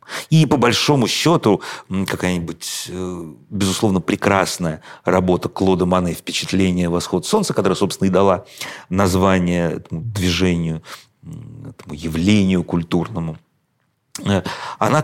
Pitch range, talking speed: 85-115 Hz, 95 wpm